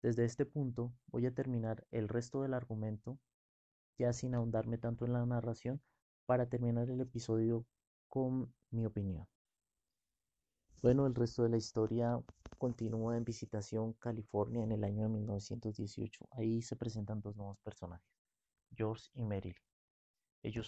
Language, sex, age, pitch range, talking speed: Spanish, male, 30-49, 105-115 Hz, 140 wpm